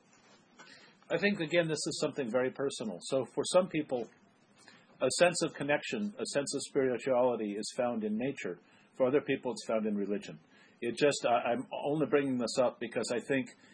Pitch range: 120-150 Hz